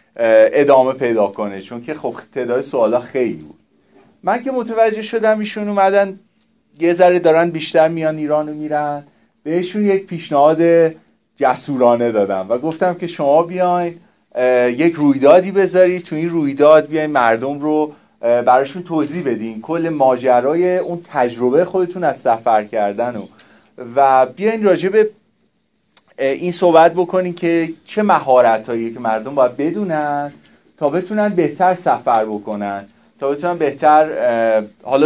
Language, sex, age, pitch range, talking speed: Persian, male, 30-49, 125-175 Hz, 130 wpm